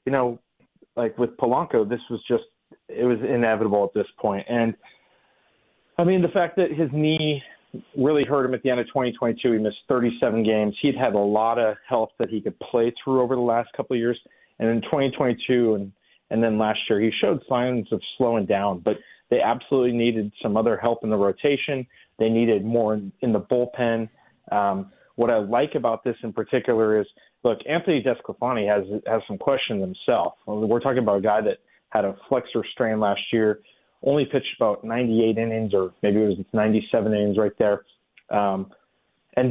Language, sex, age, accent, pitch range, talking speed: English, male, 30-49, American, 110-130 Hz, 190 wpm